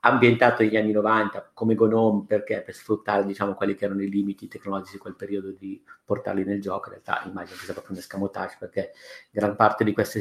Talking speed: 220 wpm